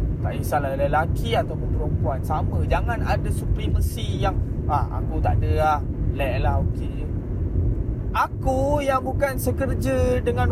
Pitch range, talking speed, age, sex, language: 85-110 Hz, 135 wpm, 20-39, male, Malay